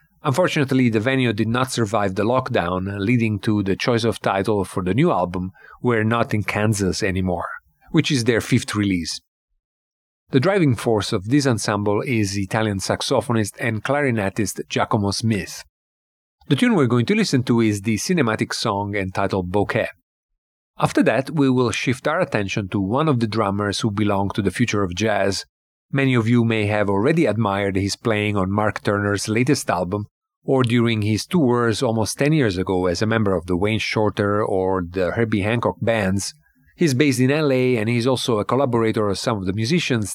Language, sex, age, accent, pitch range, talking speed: English, male, 40-59, Italian, 100-120 Hz, 180 wpm